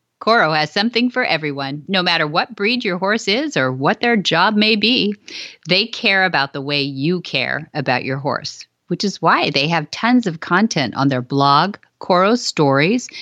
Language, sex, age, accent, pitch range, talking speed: English, female, 40-59, American, 150-230 Hz, 185 wpm